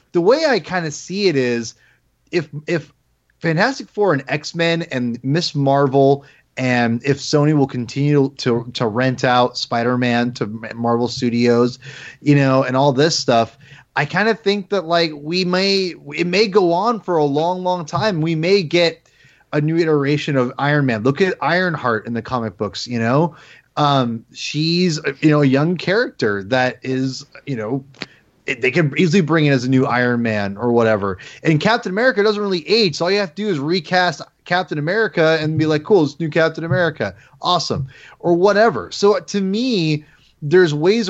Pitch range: 125-175 Hz